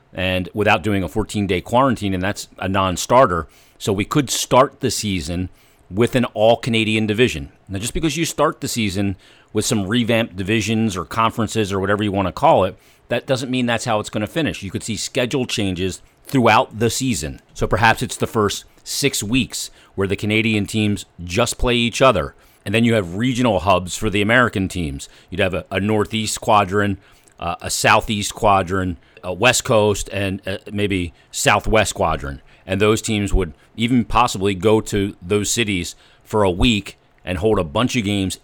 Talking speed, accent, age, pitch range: 185 wpm, American, 40-59, 95-110 Hz